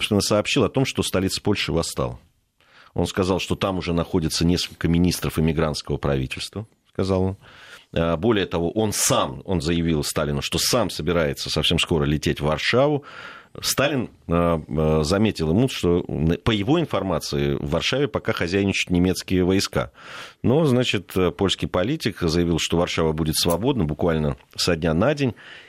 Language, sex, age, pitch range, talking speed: Russian, male, 30-49, 80-100 Hz, 140 wpm